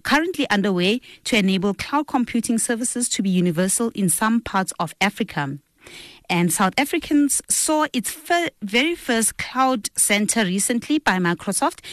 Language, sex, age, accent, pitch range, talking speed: English, female, 30-49, South African, 190-245 Hz, 135 wpm